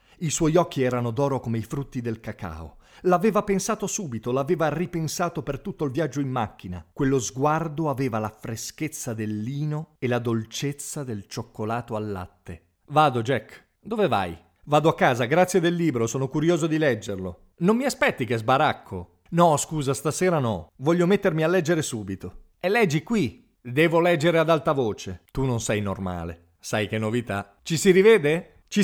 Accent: native